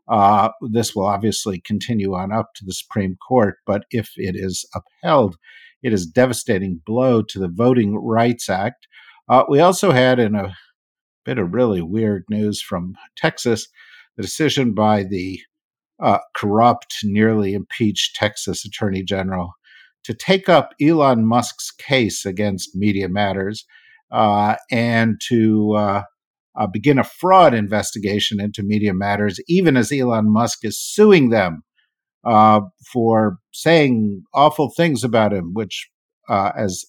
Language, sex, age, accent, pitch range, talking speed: English, male, 50-69, American, 100-120 Hz, 145 wpm